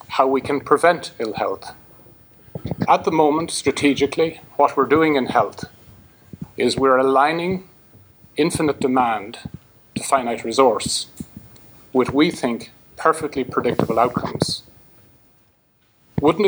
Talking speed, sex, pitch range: 110 wpm, male, 125-155 Hz